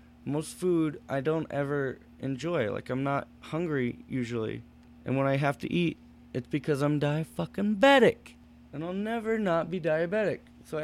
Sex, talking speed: male, 165 wpm